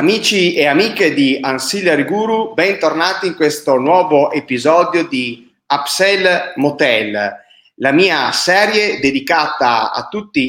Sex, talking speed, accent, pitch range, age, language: male, 115 wpm, native, 135-200 Hz, 30-49, Italian